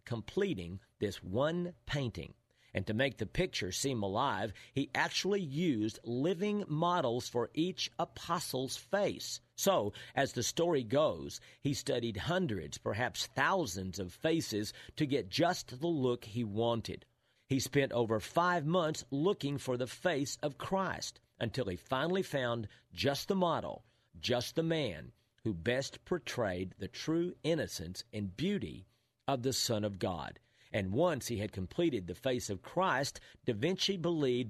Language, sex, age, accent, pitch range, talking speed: English, male, 50-69, American, 110-155 Hz, 150 wpm